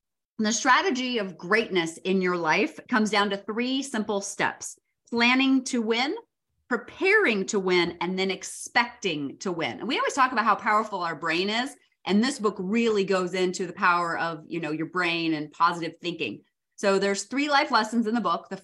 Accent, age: American, 30-49